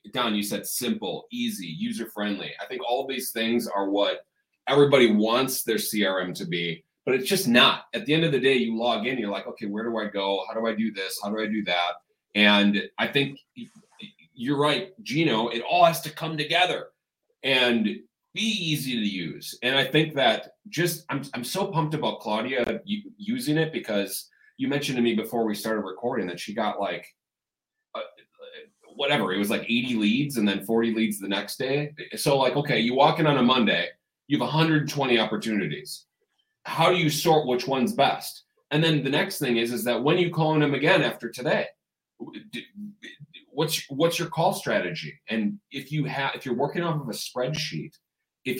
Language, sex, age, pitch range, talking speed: English, male, 30-49, 115-160 Hz, 200 wpm